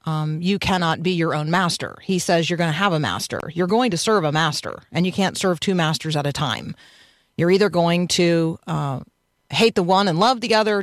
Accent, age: American, 40-59